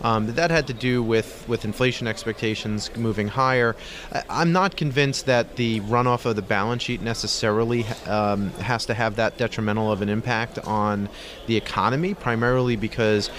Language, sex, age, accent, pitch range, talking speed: English, male, 30-49, American, 105-130 Hz, 165 wpm